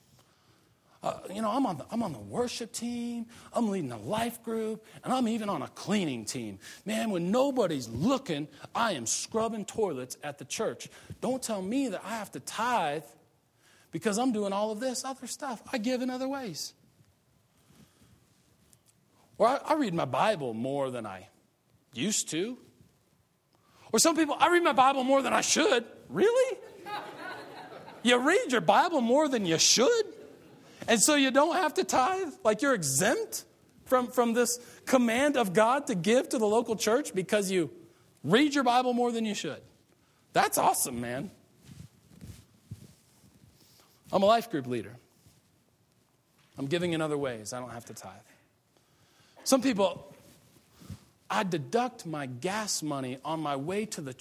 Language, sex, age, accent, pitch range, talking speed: English, male, 40-59, American, 150-255 Hz, 160 wpm